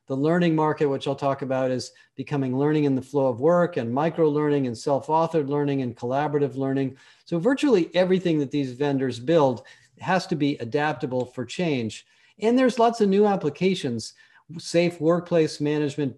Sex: male